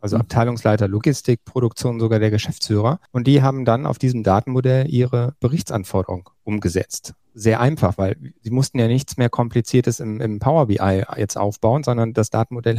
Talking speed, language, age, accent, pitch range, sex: 165 wpm, German, 40-59, German, 110-130 Hz, male